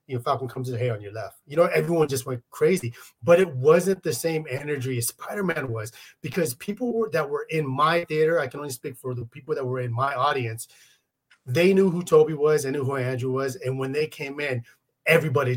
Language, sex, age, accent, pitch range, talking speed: English, male, 30-49, American, 130-185 Hz, 225 wpm